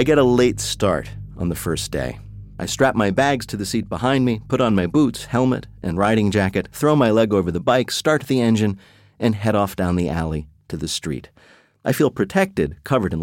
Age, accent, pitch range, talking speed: 50-69, American, 90-115 Hz, 220 wpm